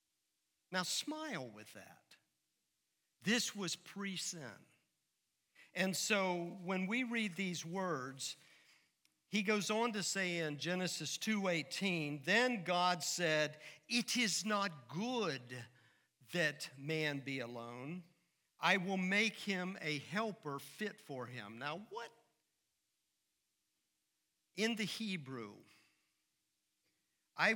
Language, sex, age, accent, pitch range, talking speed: English, male, 50-69, American, 135-185 Hz, 105 wpm